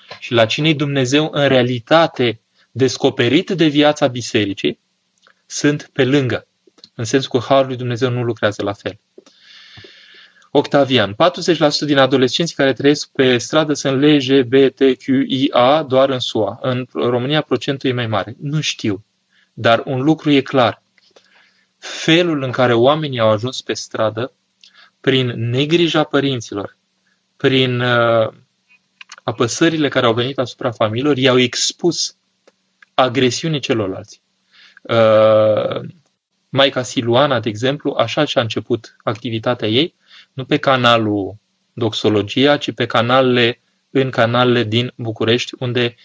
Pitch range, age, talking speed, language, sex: 115-145 Hz, 20-39, 120 wpm, Romanian, male